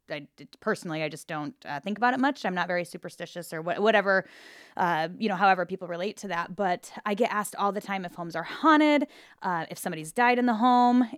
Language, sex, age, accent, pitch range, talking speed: English, female, 10-29, American, 175-225 Hz, 230 wpm